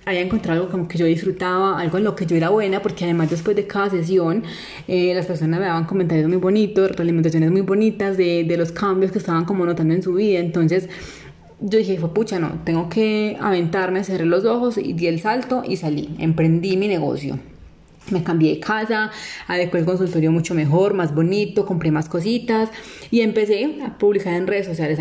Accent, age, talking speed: Colombian, 20-39, 200 wpm